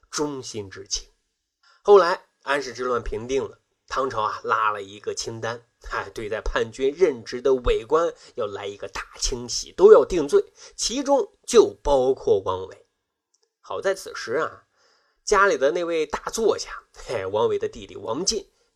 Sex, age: male, 20-39